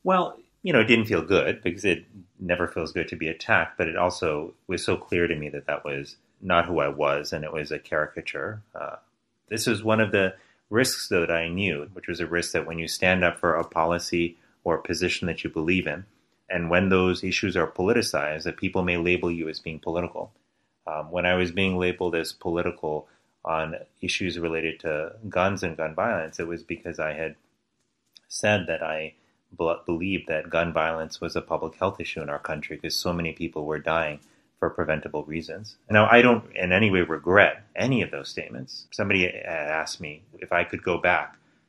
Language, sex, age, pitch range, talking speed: English, male, 30-49, 80-95 Hz, 205 wpm